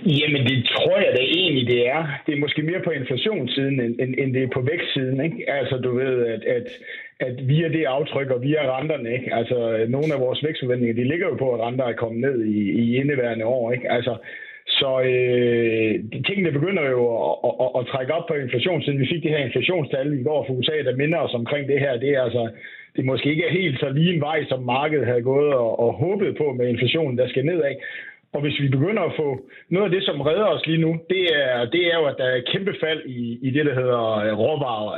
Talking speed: 240 wpm